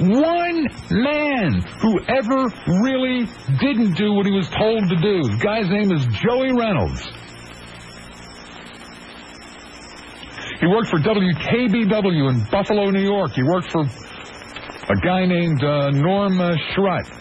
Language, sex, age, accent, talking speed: English, male, 60-79, American, 130 wpm